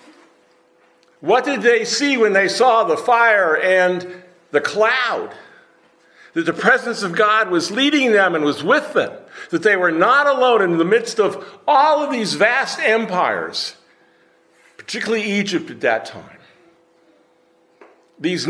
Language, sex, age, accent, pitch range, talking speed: English, male, 50-69, American, 150-220 Hz, 145 wpm